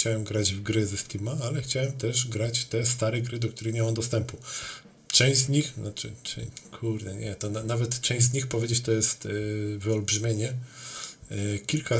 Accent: native